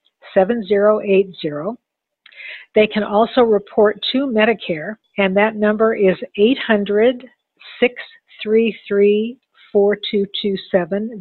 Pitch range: 185-220 Hz